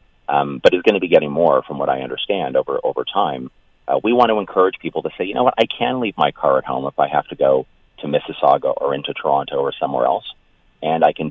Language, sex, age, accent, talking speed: English, male, 30-49, American, 260 wpm